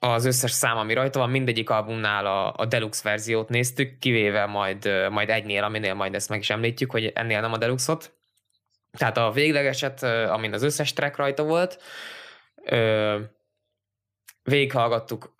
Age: 20-39